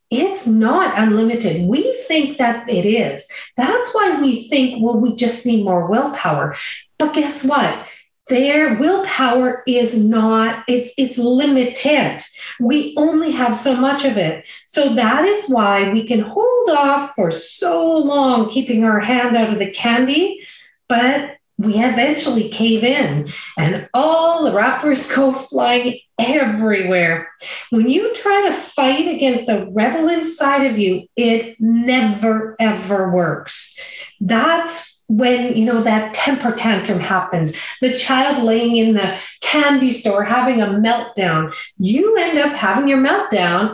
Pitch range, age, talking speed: 220-280 Hz, 40-59, 145 wpm